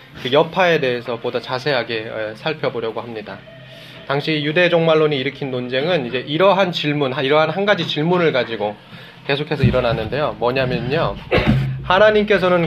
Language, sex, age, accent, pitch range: Korean, male, 20-39, native, 125-165 Hz